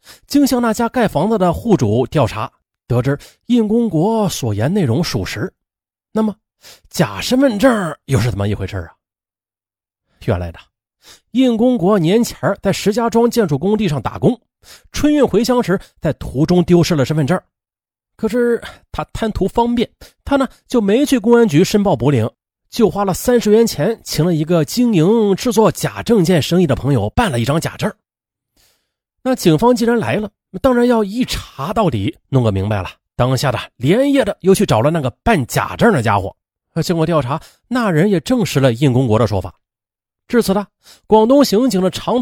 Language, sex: Chinese, male